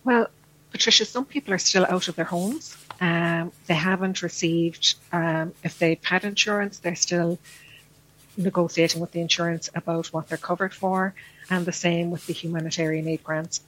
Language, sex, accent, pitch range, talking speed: English, female, Irish, 165-185 Hz, 165 wpm